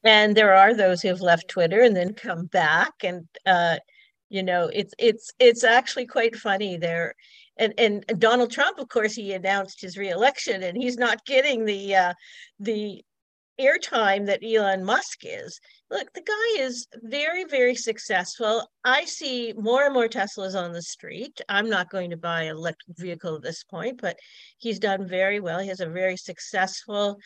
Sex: female